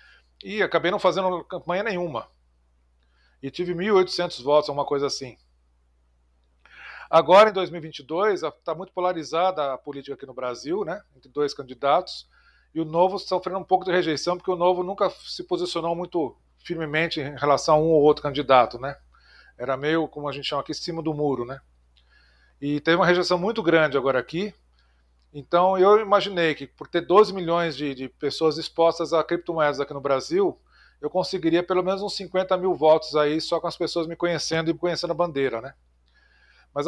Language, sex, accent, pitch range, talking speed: Portuguese, male, Brazilian, 140-180 Hz, 175 wpm